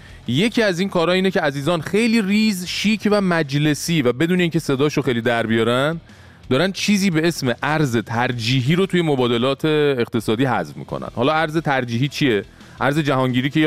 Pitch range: 110-155 Hz